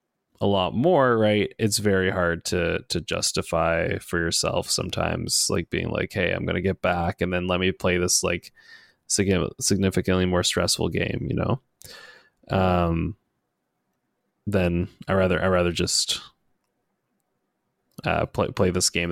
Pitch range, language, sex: 90-105 Hz, English, male